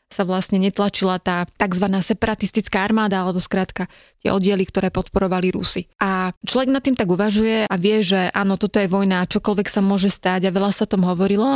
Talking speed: 190 wpm